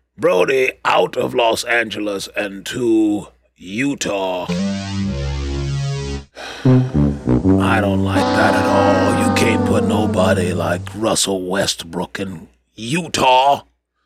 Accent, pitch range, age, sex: American, 70-105 Hz, 30-49, male